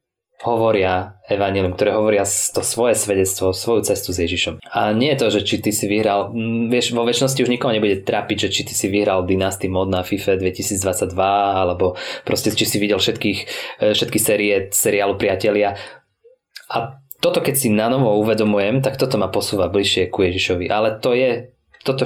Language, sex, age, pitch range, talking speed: English, male, 20-39, 95-110 Hz, 175 wpm